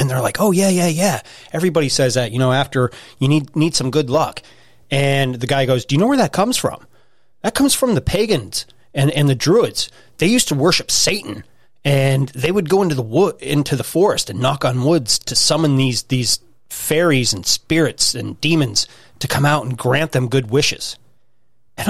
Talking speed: 210 wpm